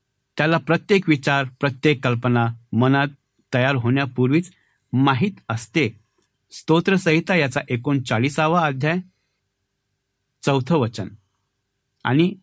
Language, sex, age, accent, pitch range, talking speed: Marathi, male, 60-79, native, 120-165 Hz, 80 wpm